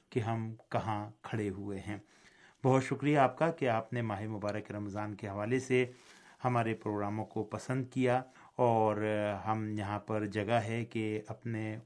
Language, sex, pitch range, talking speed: Urdu, male, 105-120 Hz, 160 wpm